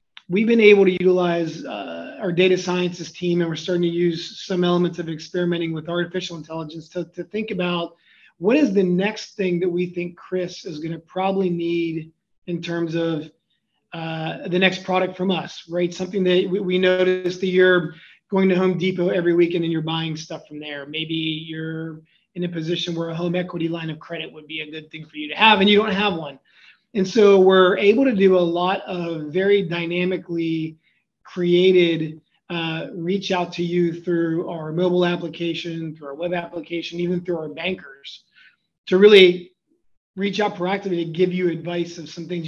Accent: American